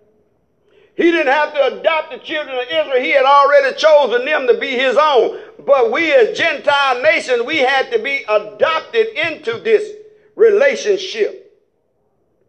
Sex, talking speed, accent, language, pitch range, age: male, 150 wpm, American, English, 275-435 Hz, 50-69